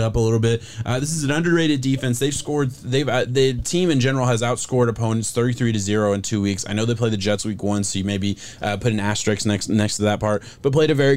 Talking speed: 280 wpm